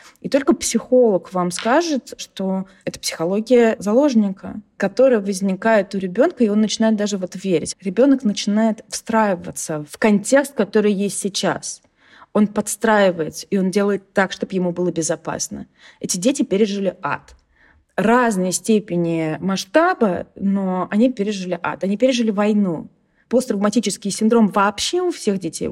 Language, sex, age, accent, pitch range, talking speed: Russian, female, 20-39, native, 165-210 Hz, 135 wpm